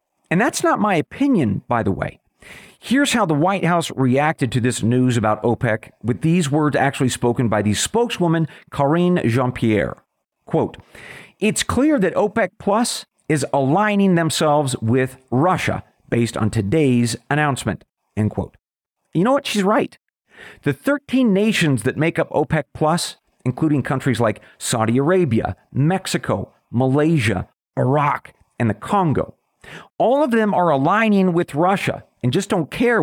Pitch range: 125-180 Hz